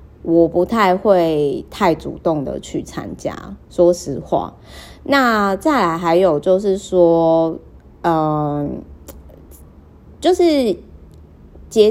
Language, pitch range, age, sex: Chinese, 150-200 Hz, 30-49, female